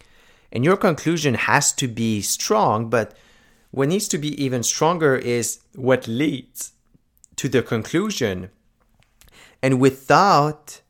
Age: 30-49